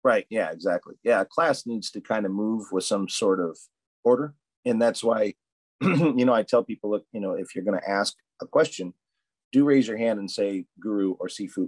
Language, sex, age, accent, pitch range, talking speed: English, male, 40-59, American, 105-150 Hz, 215 wpm